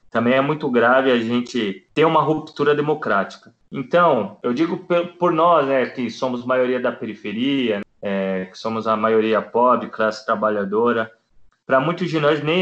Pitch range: 120-155 Hz